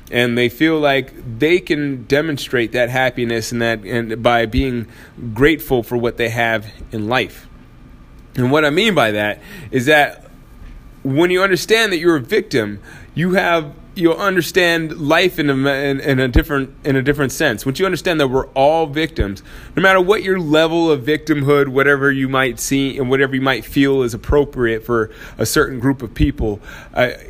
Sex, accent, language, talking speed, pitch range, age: male, American, English, 180 wpm, 120-155 Hz, 20-39